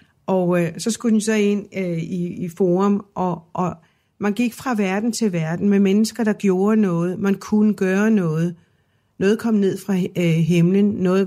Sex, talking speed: female, 170 wpm